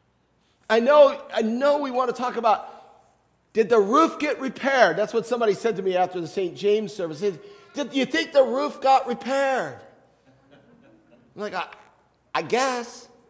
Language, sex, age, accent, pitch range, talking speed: English, male, 40-59, American, 170-235 Hz, 170 wpm